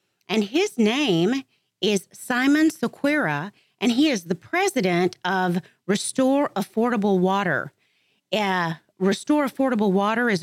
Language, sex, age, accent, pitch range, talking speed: English, female, 40-59, American, 180-225 Hz, 115 wpm